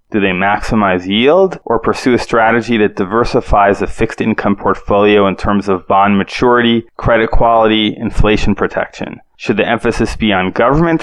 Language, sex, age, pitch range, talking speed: English, male, 20-39, 105-125 Hz, 150 wpm